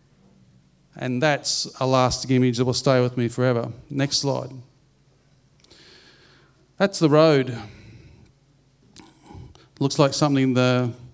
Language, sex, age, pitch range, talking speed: English, male, 40-59, 125-150 Hz, 110 wpm